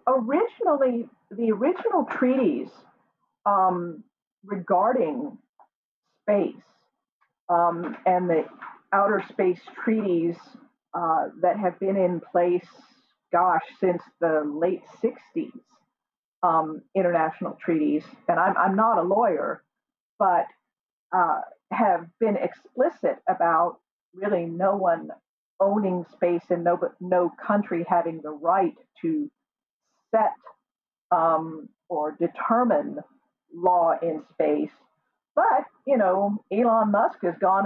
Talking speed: 105 wpm